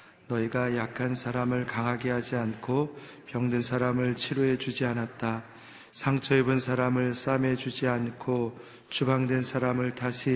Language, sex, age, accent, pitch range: Korean, male, 40-59, native, 120-130 Hz